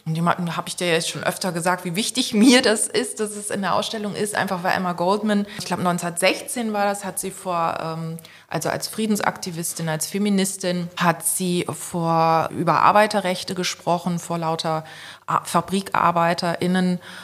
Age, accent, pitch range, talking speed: 20-39, German, 160-190 Hz, 160 wpm